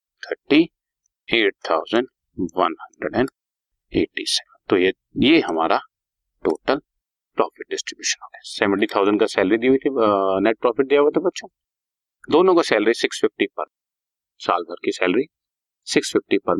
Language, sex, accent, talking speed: Hindi, male, native, 90 wpm